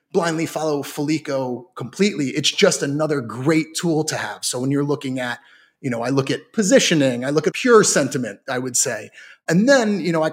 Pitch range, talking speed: 135-160 Hz, 205 wpm